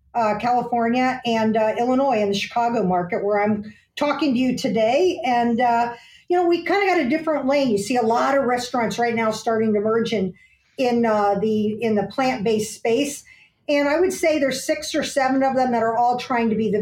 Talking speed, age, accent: 220 wpm, 50-69, American